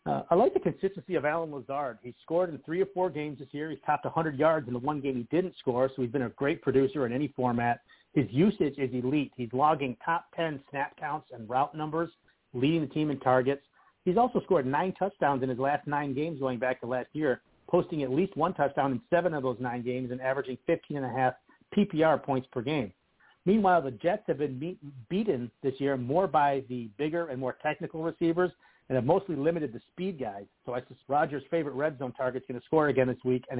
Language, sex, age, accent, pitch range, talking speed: English, male, 50-69, American, 130-170 Hz, 225 wpm